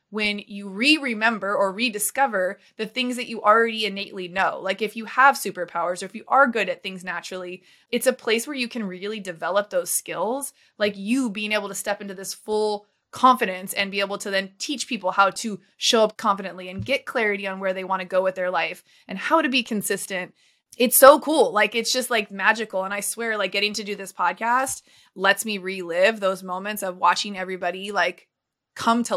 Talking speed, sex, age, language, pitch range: 210 wpm, female, 20-39, English, 190-235 Hz